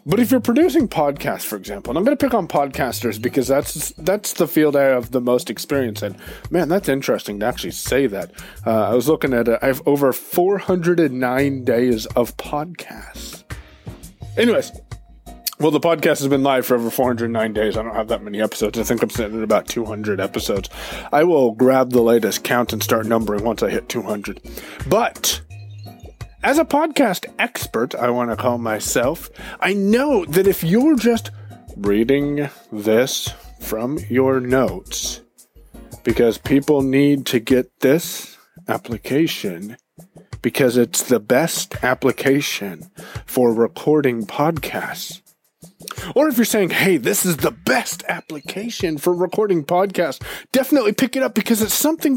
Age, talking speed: 30-49, 160 wpm